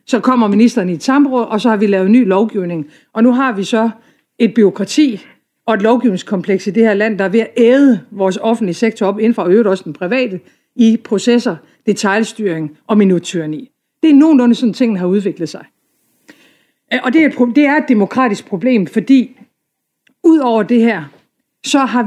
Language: Danish